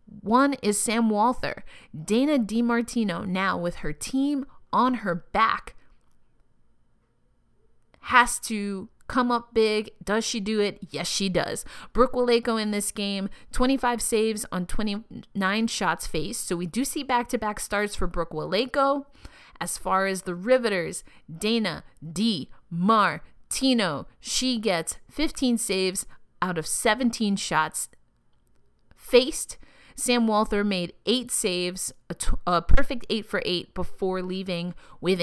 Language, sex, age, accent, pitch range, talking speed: English, female, 30-49, American, 180-235 Hz, 130 wpm